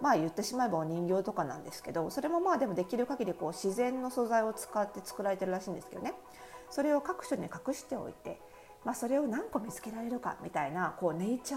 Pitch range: 175-255 Hz